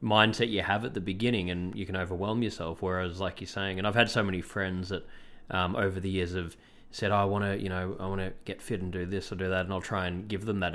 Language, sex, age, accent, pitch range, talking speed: English, male, 20-39, Australian, 90-105 Hz, 285 wpm